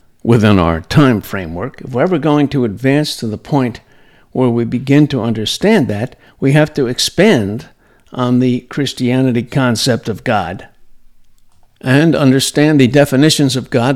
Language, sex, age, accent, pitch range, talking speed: English, male, 60-79, American, 115-140 Hz, 150 wpm